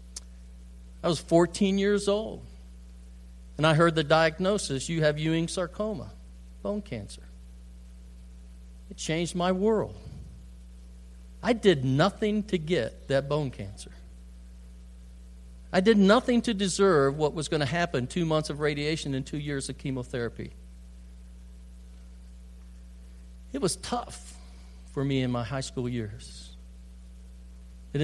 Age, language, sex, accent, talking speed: 50-69, English, male, American, 125 wpm